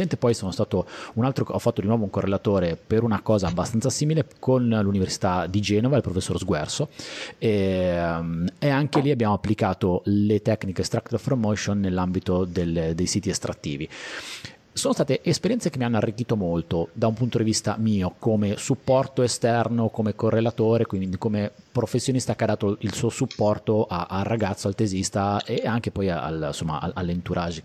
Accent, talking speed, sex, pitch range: native, 165 wpm, male, 95-120 Hz